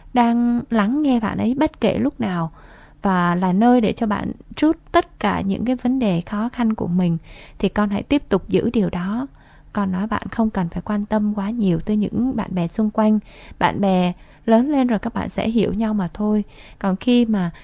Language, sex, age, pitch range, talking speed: Vietnamese, female, 20-39, 195-250 Hz, 220 wpm